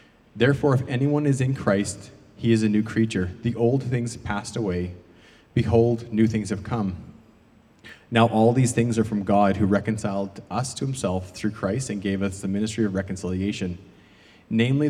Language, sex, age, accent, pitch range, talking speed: English, male, 30-49, American, 95-115 Hz, 175 wpm